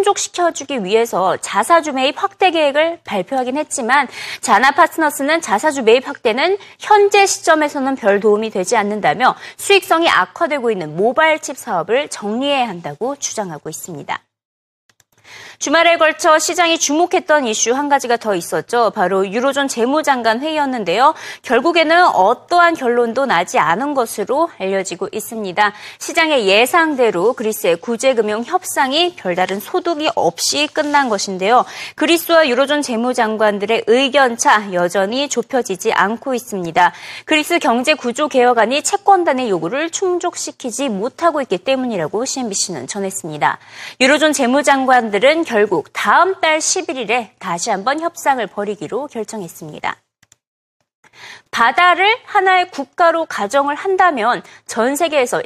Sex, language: female, Korean